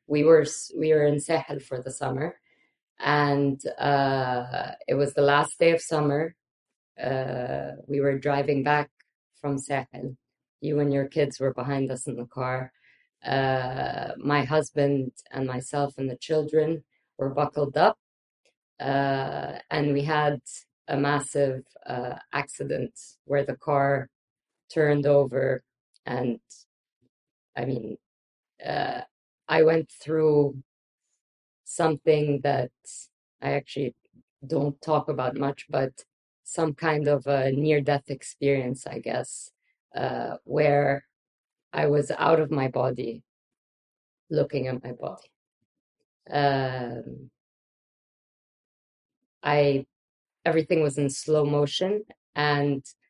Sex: female